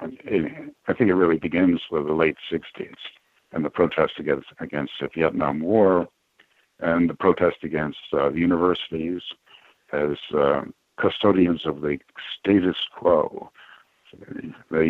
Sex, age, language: male, 60-79, English